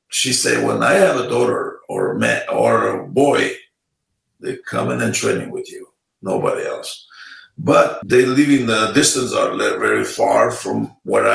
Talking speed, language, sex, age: 175 wpm, English, male, 50-69